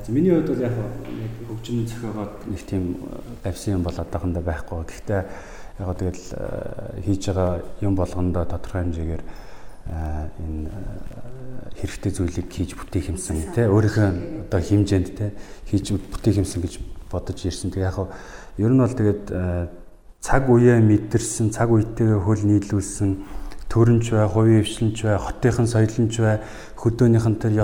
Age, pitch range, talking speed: 40-59, 90-110 Hz, 110 wpm